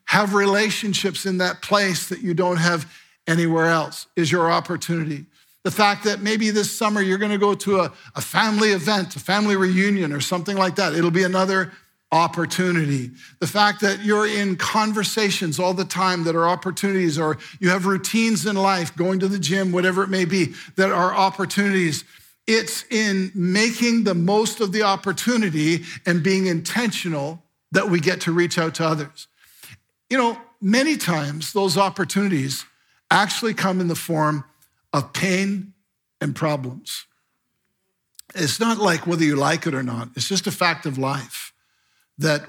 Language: English